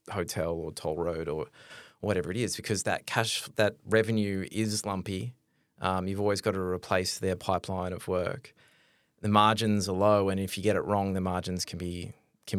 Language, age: English, 20-39